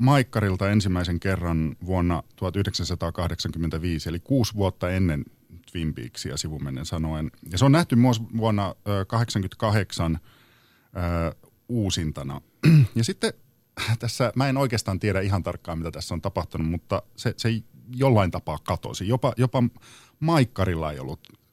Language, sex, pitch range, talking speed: Finnish, male, 90-115 Hz, 130 wpm